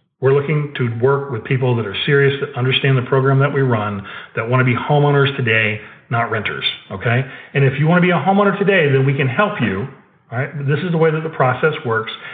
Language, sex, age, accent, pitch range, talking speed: English, male, 40-59, American, 135-175 Hz, 240 wpm